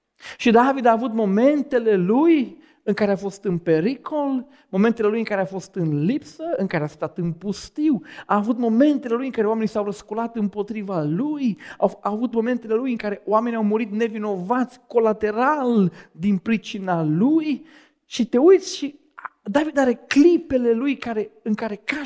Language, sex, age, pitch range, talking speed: Romanian, male, 40-59, 175-245 Hz, 170 wpm